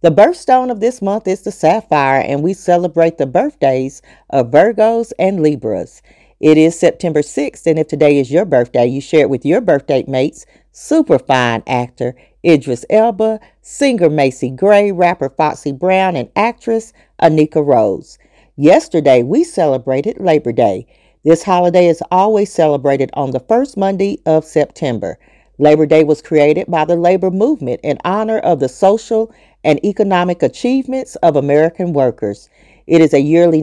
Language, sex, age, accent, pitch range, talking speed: English, female, 40-59, American, 145-200 Hz, 160 wpm